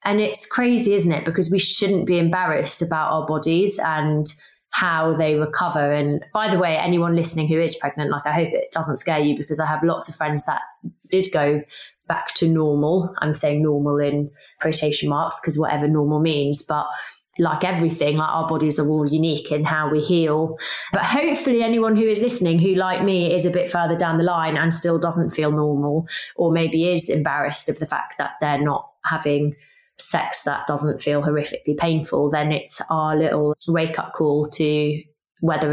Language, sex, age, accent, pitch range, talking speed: English, female, 20-39, British, 150-175 Hz, 190 wpm